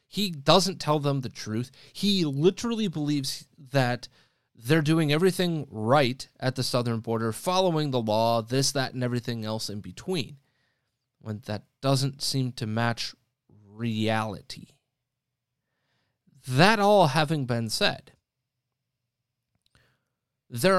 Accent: American